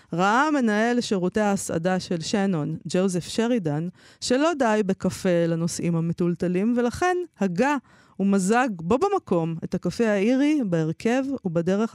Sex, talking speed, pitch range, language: female, 115 wpm, 175-240 Hz, Hebrew